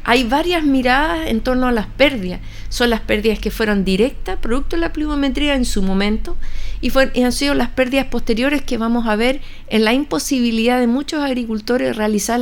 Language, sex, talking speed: Spanish, female, 195 wpm